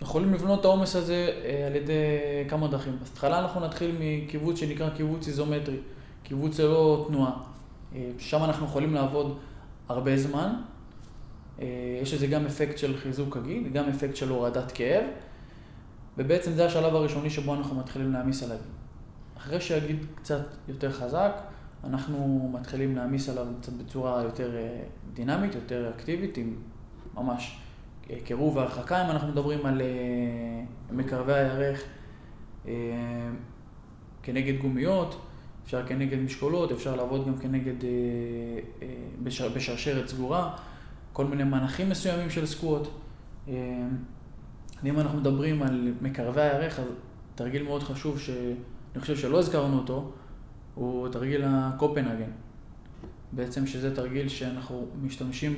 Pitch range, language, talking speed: 125-150 Hz, Hebrew, 120 wpm